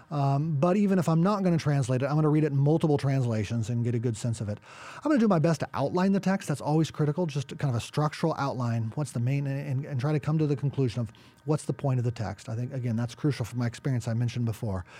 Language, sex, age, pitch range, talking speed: English, male, 40-59, 120-165 Hz, 290 wpm